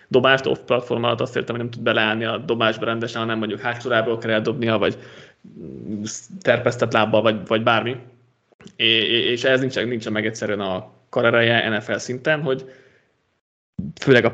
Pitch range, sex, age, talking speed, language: 115-130 Hz, male, 20-39, 150 wpm, Hungarian